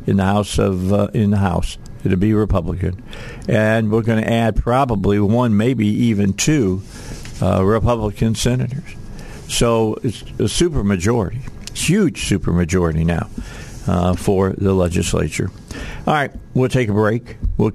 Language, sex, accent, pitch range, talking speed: English, male, American, 105-130 Hz, 140 wpm